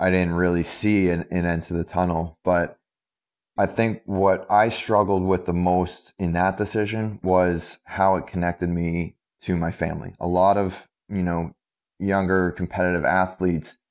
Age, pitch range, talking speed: 20-39, 80-95 Hz, 165 wpm